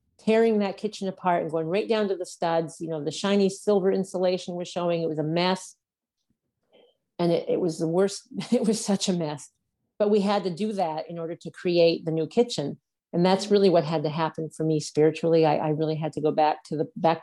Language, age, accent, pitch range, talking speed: English, 50-69, American, 155-190 Hz, 235 wpm